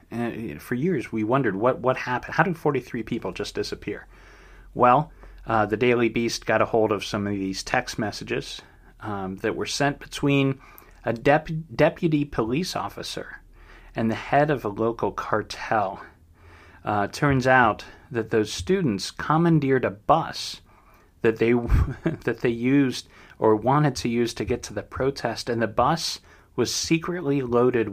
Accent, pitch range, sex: American, 105-125 Hz, male